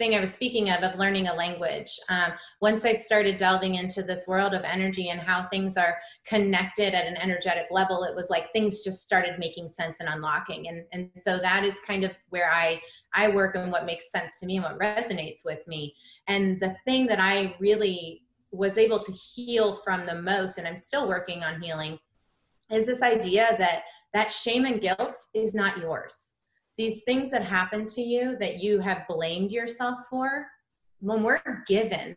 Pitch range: 180-220 Hz